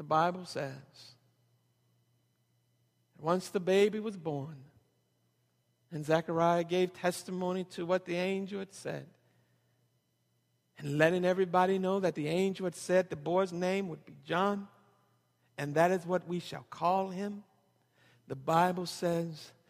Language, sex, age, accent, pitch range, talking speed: English, male, 60-79, American, 135-190 Hz, 135 wpm